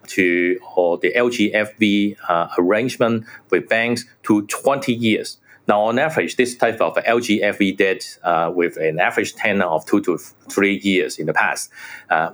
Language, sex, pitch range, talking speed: English, male, 90-120 Hz, 160 wpm